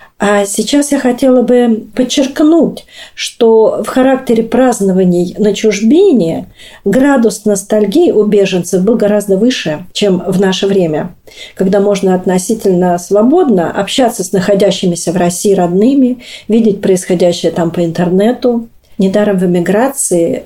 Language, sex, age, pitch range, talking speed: Russian, female, 40-59, 185-230 Hz, 120 wpm